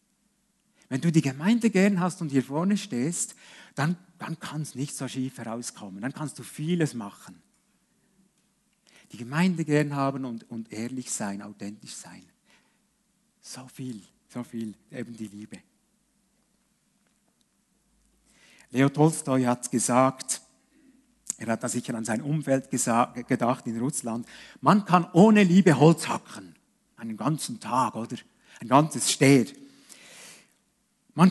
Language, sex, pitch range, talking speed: German, male, 130-205 Hz, 130 wpm